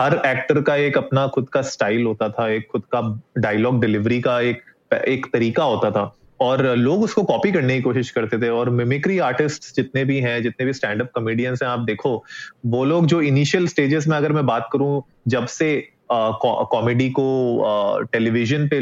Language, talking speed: Hindi, 195 wpm